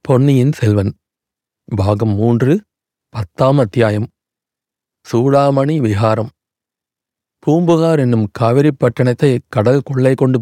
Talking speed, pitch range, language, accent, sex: 80 wpm, 115-140 Hz, Tamil, native, male